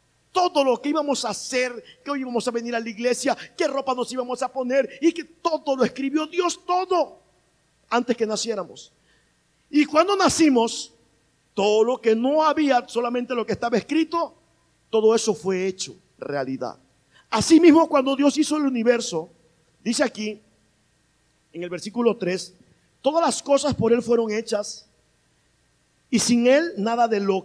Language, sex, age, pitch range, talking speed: Spanish, male, 50-69, 195-280 Hz, 160 wpm